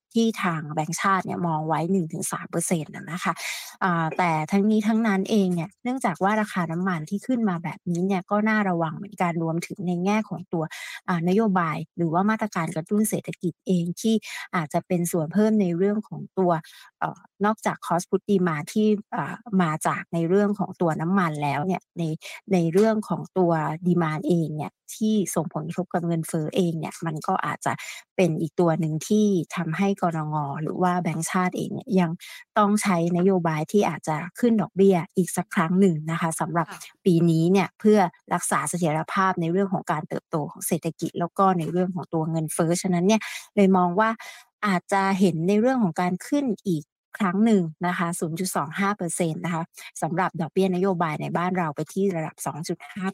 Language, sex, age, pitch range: Thai, female, 20-39, 165-200 Hz